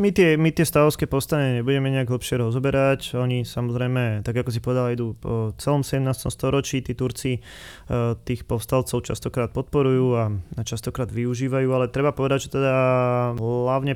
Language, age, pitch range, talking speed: Slovak, 20-39, 120-135 Hz, 150 wpm